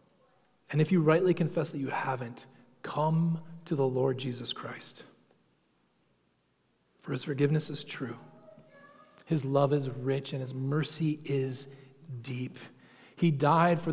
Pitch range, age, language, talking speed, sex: 130-155 Hz, 30-49, English, 135 wpm, male